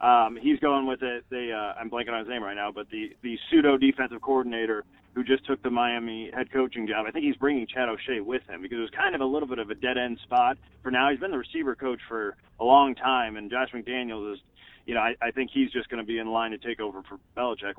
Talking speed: 270 wpm